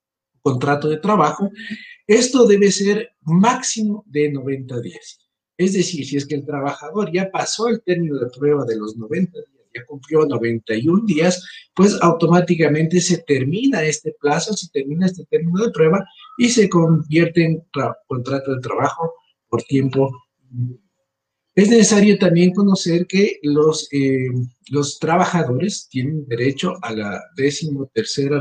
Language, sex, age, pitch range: Spanish, male, 50-69, 135-185 Hz